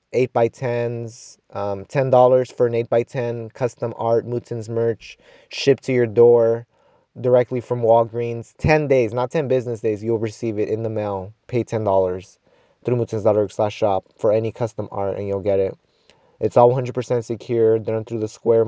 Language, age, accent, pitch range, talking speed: English, 20-39, American, 110-135 Hz, 160 wpm